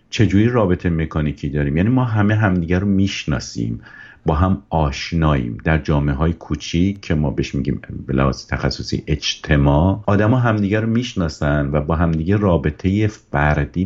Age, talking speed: 50-69, 145 wpm